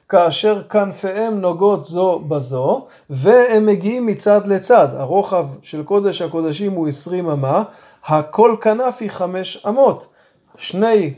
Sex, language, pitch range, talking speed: male, Hebrew, 180-215 Hz, 120 wpm